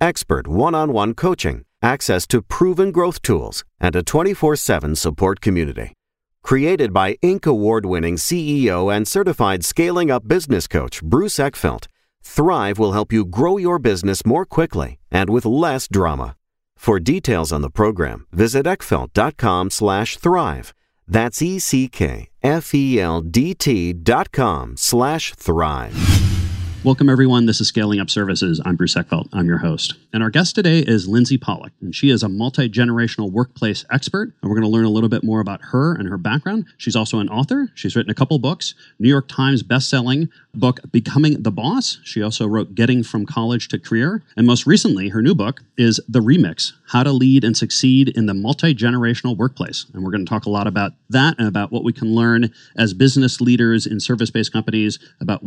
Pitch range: 100-135 Hz